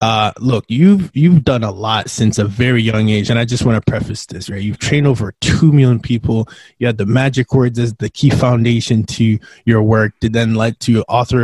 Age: 20-39